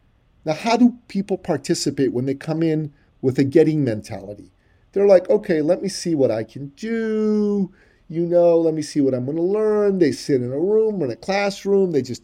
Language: English